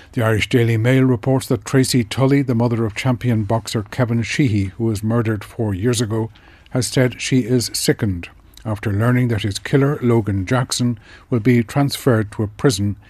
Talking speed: 180 wpm